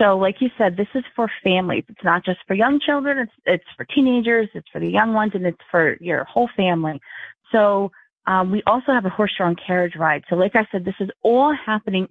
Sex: female